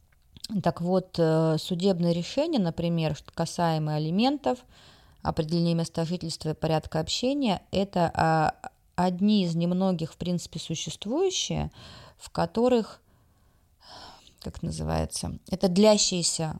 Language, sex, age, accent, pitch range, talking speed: Russian, female, 20-39, native, 155-190 Hz, 100 wpm